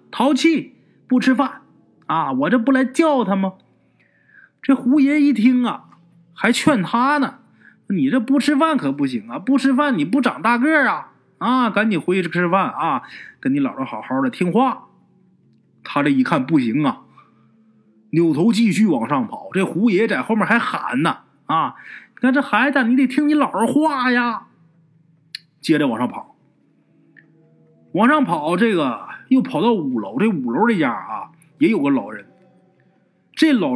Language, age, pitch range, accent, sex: Chinese, 30-49, 195-275 Hz, native, male